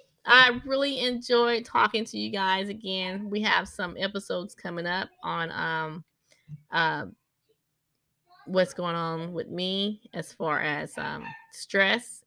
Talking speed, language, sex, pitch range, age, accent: 130 wpm, English, female, 165-220 Hz, 20-39, American